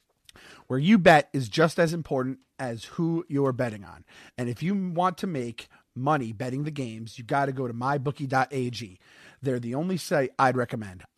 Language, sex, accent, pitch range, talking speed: English, male, American, 125-160 Hz, 180 wpm